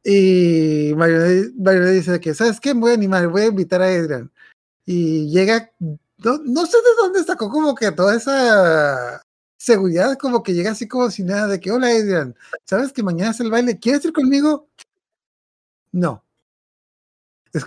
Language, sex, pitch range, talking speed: Spanish, male, 175-240 Hz, 170 wpm